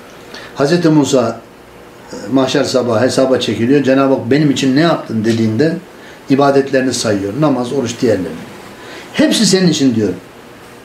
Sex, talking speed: male, 120 wpm